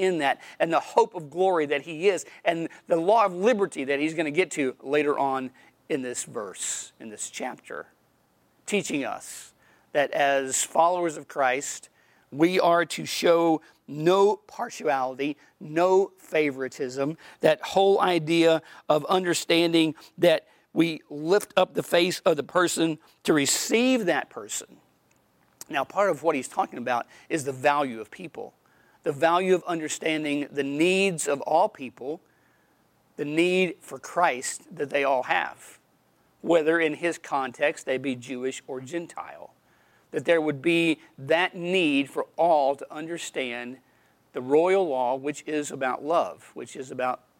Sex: male